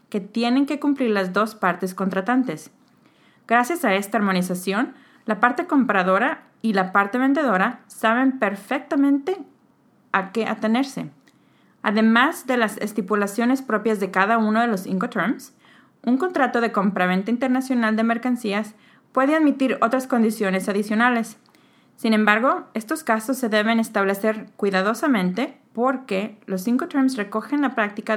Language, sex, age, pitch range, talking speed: English, female, 30-49, 195-255 Hz, 130 wpm